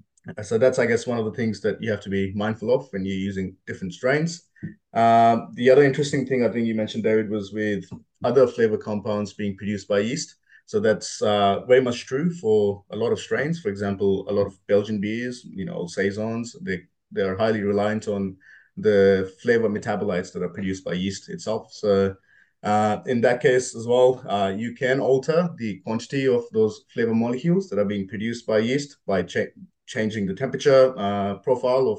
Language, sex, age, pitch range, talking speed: English, male, 30-49, 100-130 Hz, 200 wpm